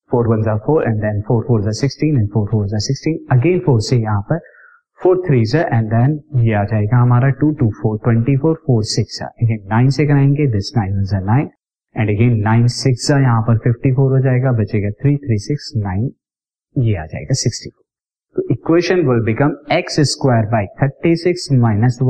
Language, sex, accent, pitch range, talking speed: Hindi, male, native, 115-150 Hz, 205 wpm